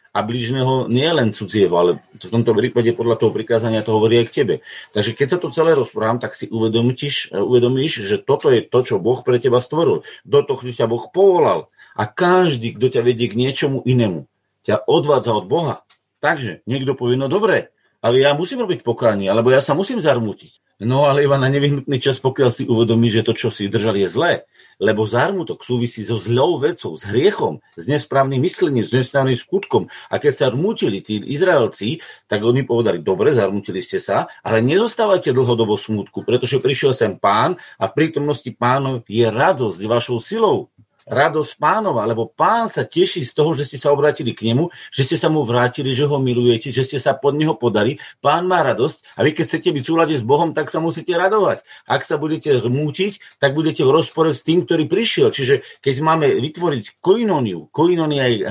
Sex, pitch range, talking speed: male, 120-165 Hz, 195 wpm